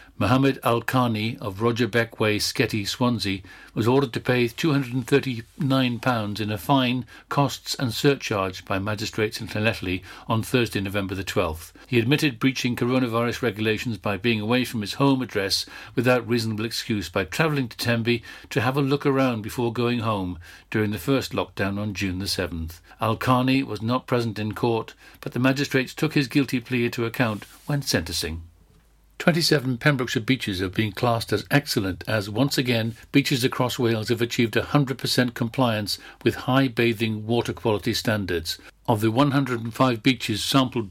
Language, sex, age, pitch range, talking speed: English, male, 60-79, 110-135 Hz, 155 wpm